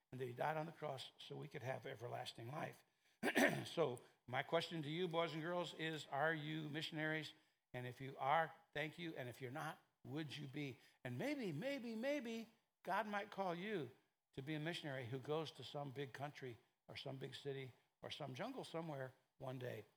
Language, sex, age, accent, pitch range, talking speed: English, male, 60-79, American, 130-160 Hz, 200 wpm